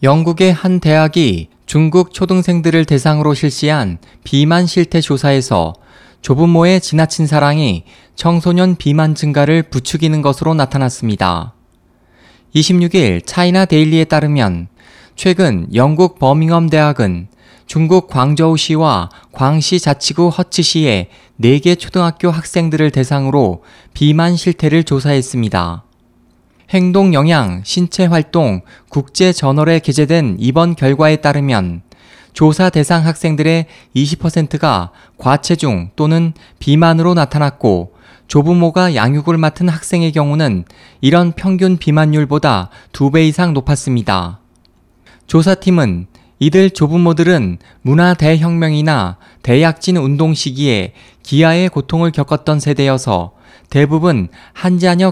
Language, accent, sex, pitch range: Korean, native, male, 125-170 Hz